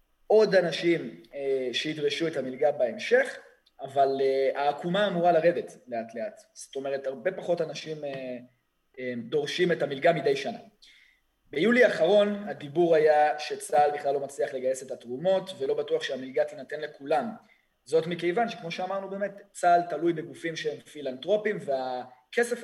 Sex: male